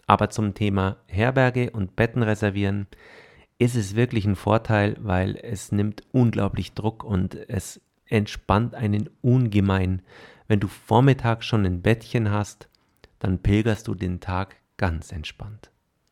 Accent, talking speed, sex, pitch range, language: German, 135 wpm, male, 100-120 Hz, German